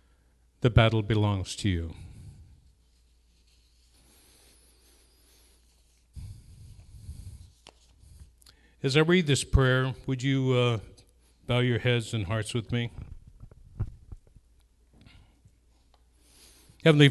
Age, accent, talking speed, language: 60-79, American, 75 wpm, English